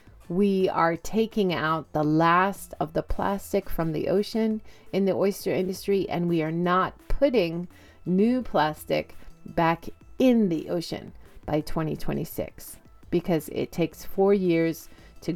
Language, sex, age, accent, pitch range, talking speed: English, female, 40-59, American, 155-200 Hz, 135 wpm